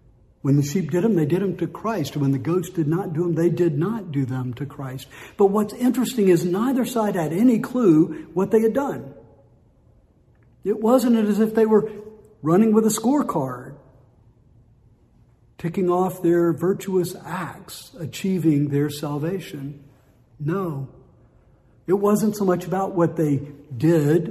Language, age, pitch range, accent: English, 60-79, 135-180 Hz, American